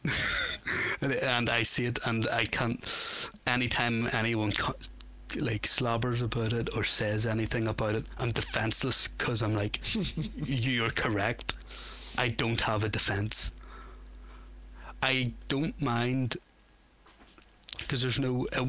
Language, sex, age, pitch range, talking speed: English, male, 30-49, 105-120 Hz, 120 wpm